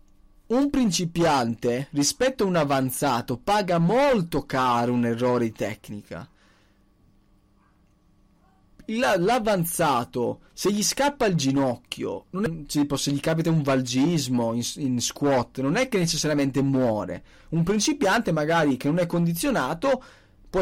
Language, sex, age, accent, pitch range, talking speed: Italian, male, 20-39, native, 135-220 Hz, 115 wpm